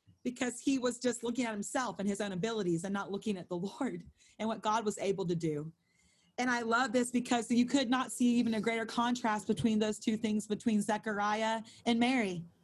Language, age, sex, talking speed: English, 30-49, female, 215 wpm